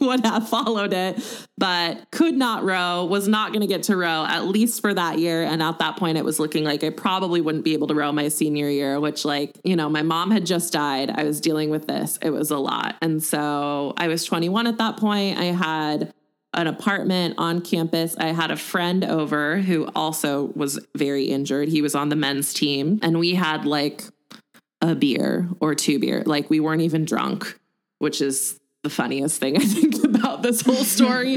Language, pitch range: English, 145-180 Hz